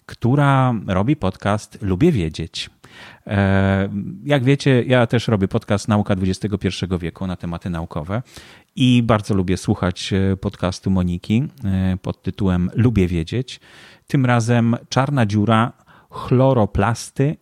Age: 30-49